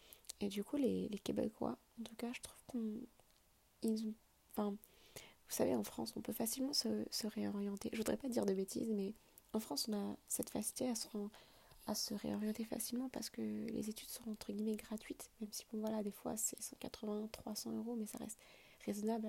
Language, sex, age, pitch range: French, female, 20-39, 215-235 Hz